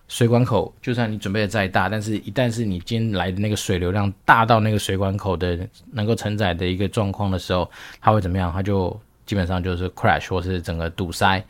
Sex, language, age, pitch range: male, Chinese, 20-39, 95-125 Hz